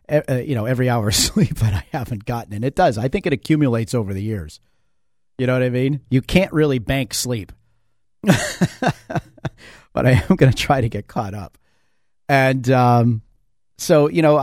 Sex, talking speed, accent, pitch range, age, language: male, 190 wpm, American, 110-135 Hz, 40-59, English